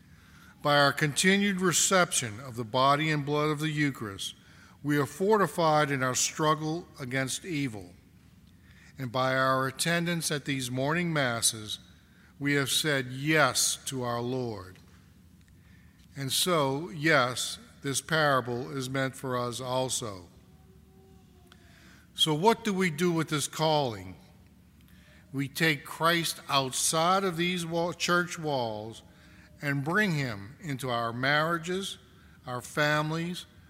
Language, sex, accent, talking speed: English, male, American, 125 wpm